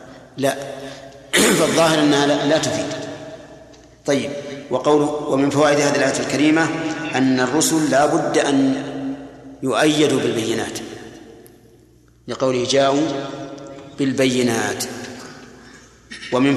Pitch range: 130-145 Hz